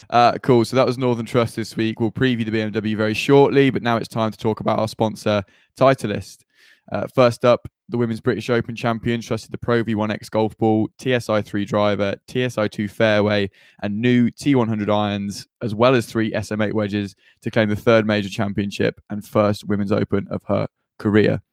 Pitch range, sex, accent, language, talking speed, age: 105-120 Hz, male, British, English, 190 wpm, 10-29